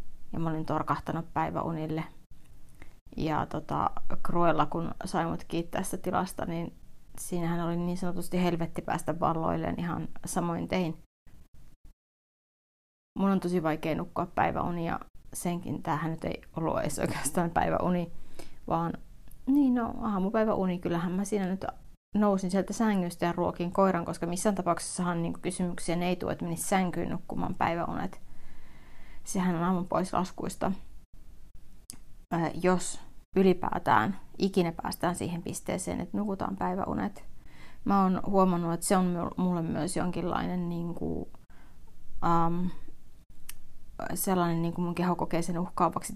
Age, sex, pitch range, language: 30-49, female, 170-185 Hz, Finnish